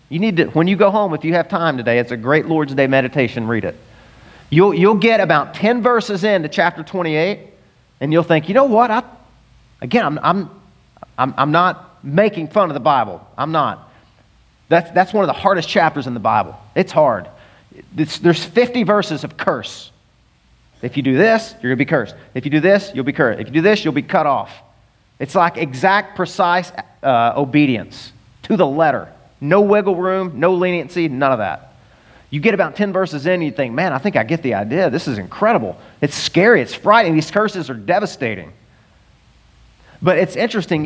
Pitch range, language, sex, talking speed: 135-190 Hz, English, male, 200 wpm